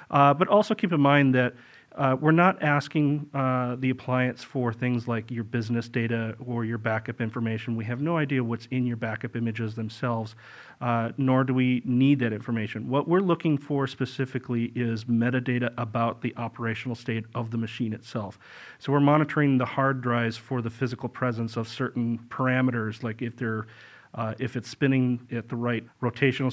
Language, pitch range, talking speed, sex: English, 115-135 Hz, 180 wpm, male